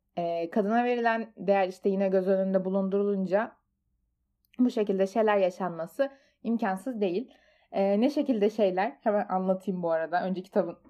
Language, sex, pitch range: Turkish, female, 195-260 Hz